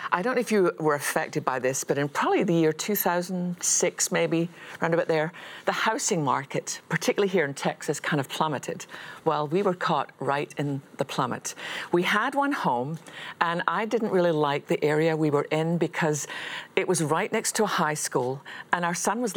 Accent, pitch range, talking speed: British, 155-190 Hz, 200 wpm